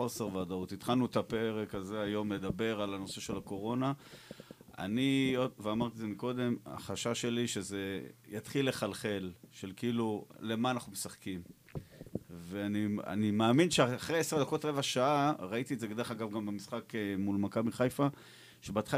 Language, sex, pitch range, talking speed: Hebrew, male, 105-130 Hz, 140 wpm